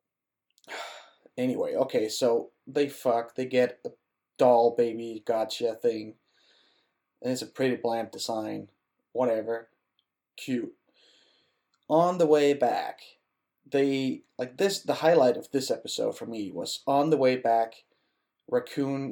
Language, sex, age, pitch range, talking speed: English, male, 20-39, 115-145 Hz, 125 wpm